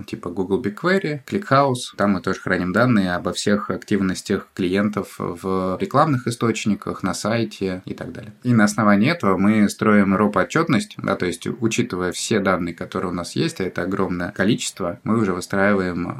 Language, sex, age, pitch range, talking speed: Russian, male, 20-39, 95-105 Hz, 165 wpm